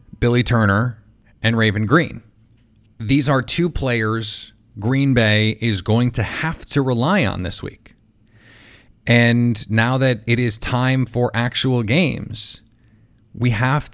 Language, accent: English, American